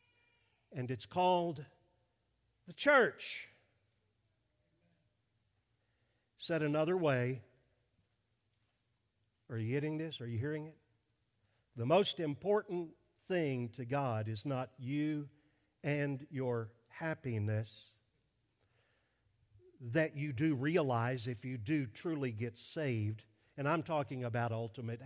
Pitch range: 115-150 Hz